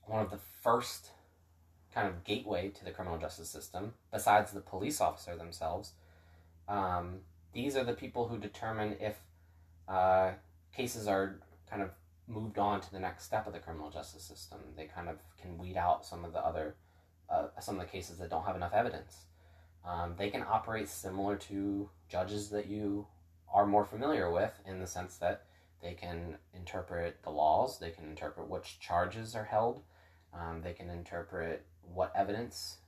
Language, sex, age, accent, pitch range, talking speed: English, male, 20-39, American, 85-100 Hz, 175 wpm